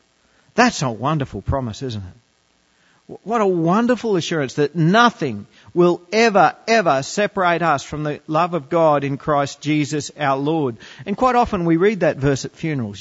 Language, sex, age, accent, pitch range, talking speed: English, male, 50-69, Australian, 135-195 Hz, 165 wpm